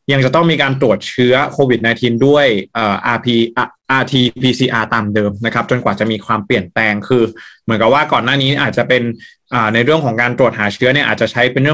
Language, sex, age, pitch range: Thai, male, 20-39, 115-140 Hz